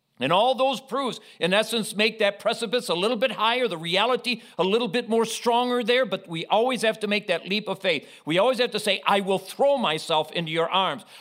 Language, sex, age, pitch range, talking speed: English, male, 50-69, 165-220 Hz, 230 wpm